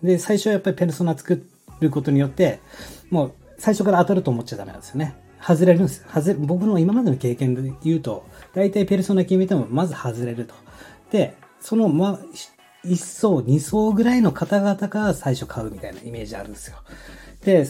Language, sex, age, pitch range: Japanese, male, 40-59, 125-180 Hz